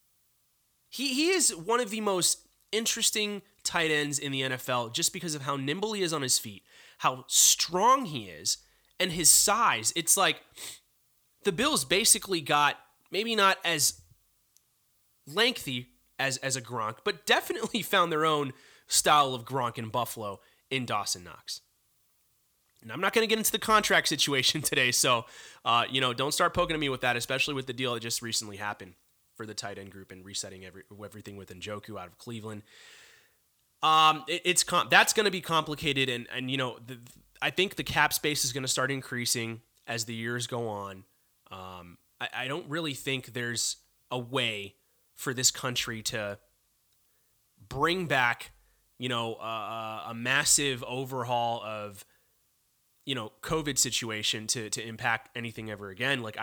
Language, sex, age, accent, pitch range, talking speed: English, male, 30-49, American, 115-160 Hz, 175 wpm